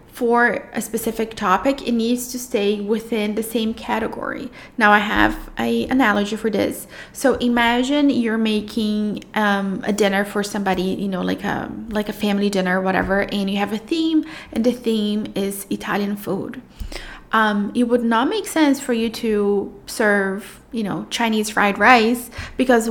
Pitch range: 200-245 Hz